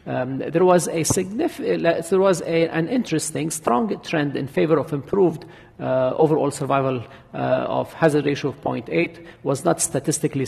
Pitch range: 125-155 Hz